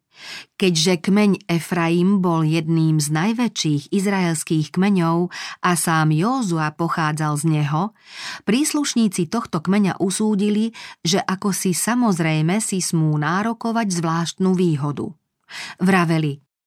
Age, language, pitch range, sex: 40-59, Slovak, 160-205 Hz, female